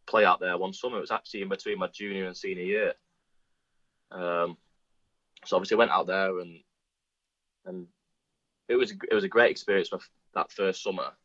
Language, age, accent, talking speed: English, 20-39, British, 180 wpm